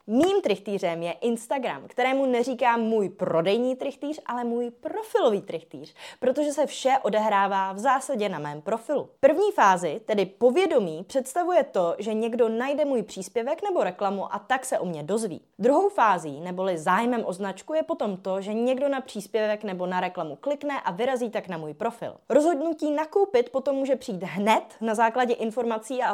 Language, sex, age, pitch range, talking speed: Czech, female, 20-39, 200-275 Hz, 170 wpm